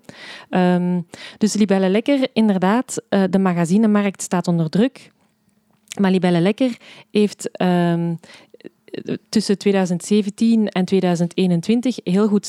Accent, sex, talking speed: Belgian, female, 90 wpm